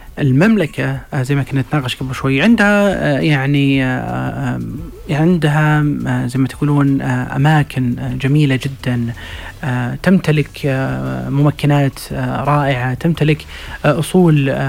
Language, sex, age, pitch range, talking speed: Arabic, male, 30-49, 130-160 Hz, 85 wpm